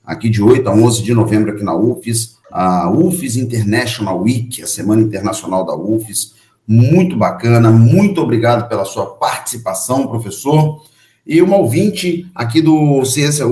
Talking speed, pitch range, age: 145 wpm, 110-150 Hz, 40-59